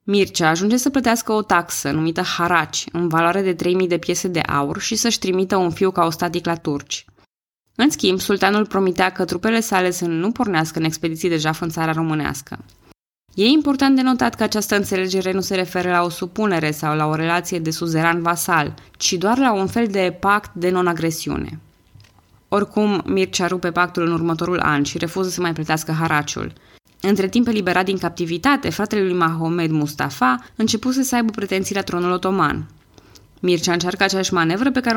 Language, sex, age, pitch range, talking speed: Romanian, female, 20-39, 165-200 Hz, 180 wpm